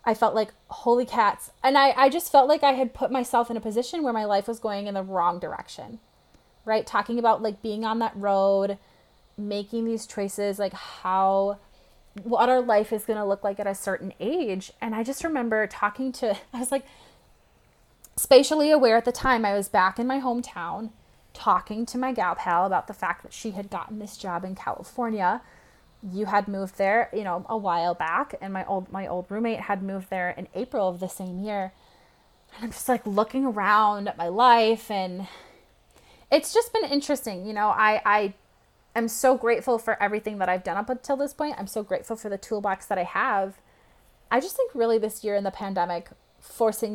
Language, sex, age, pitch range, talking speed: English, female, 20-39, 195-235 Hz, 205 wpm